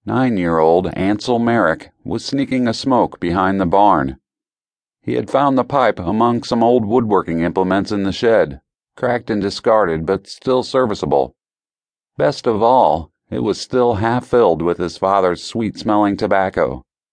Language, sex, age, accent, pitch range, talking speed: English, male, 40-59, American, 85-115 Hz, 145 wpm